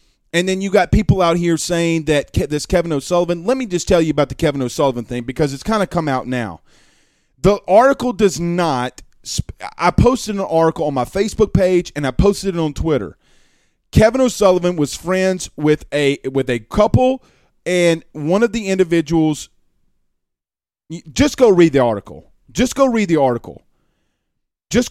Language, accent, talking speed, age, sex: English, American, 170 wpm, 30-49, male